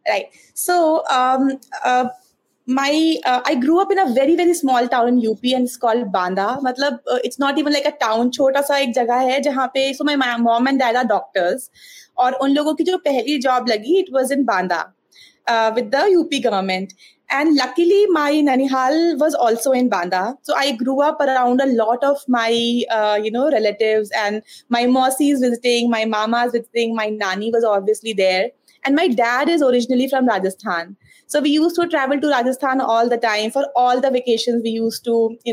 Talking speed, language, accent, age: 200 wpm, Hindi, native, 30-49